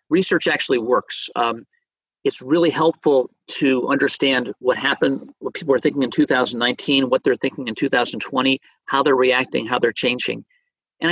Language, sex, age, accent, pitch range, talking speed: English, male, 50-69, American, 125-200 Hz, 155 wpm